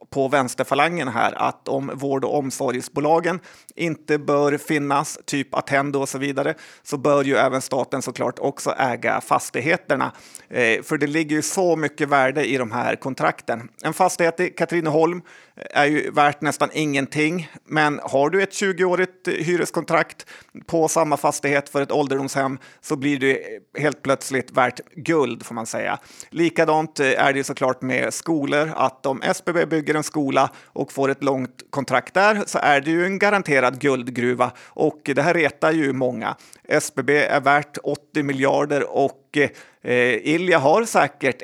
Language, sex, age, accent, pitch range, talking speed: Swedish, male, 30-49, native, 135-160 Hz, 155 wpm